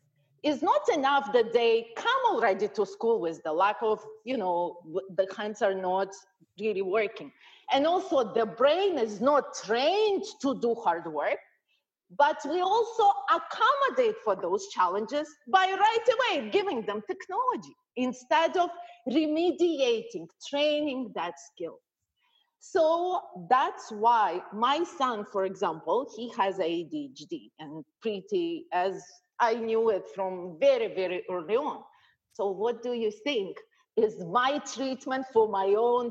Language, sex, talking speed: English, female, 140 wpm